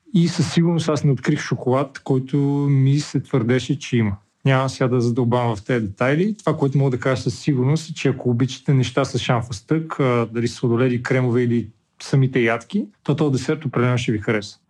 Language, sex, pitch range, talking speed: Bulgarian, male, 125-145 Hz, 195 wpm